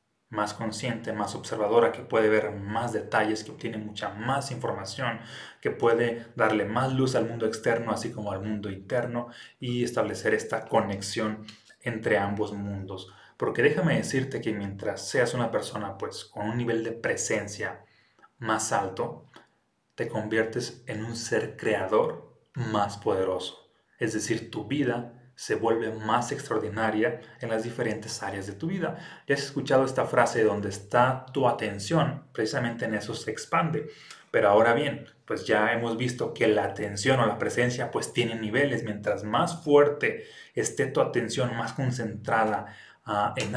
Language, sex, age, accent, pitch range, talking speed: Spanish, male, 30-49, Mexican, 105-125 Hz, 155 wpm